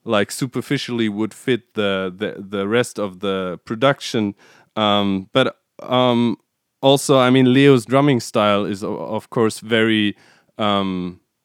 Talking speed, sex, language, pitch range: 130 wpm, male, English, 100-125 Hz